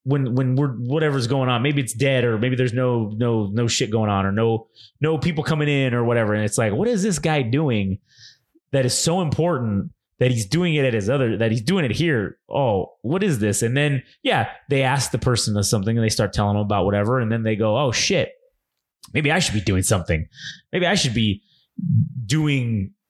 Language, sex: English, male